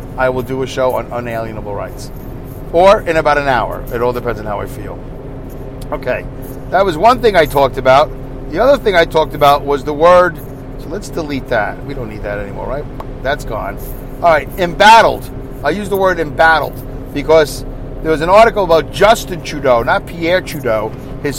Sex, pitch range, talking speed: male, 130-160 Hz, 195 wpm